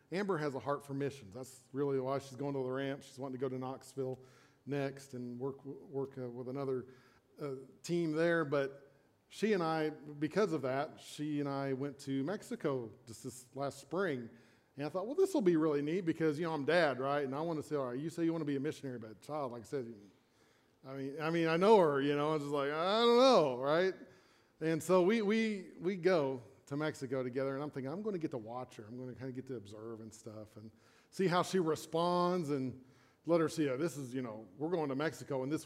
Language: English